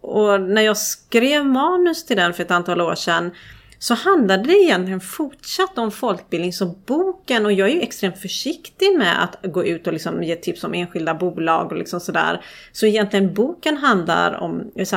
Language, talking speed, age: Swedish, 190 wpm, 30-49